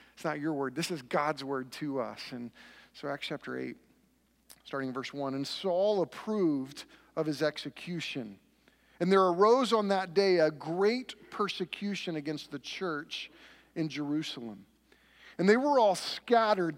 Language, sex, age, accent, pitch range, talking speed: English, male, 40-59, American, 155-205 Hz, 155 wpm